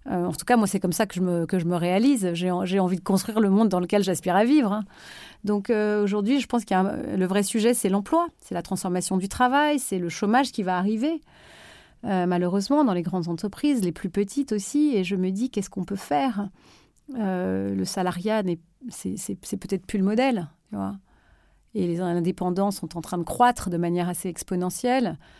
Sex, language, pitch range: female, French, 185-245 Hz